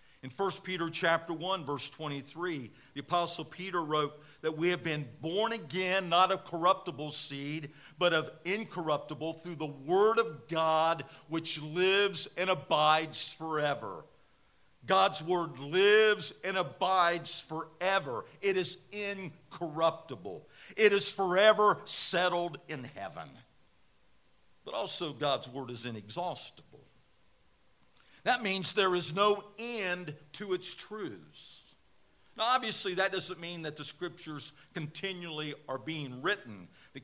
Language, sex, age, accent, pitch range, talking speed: English, male, 50-69, American, 150-185 Hz, 125 wpm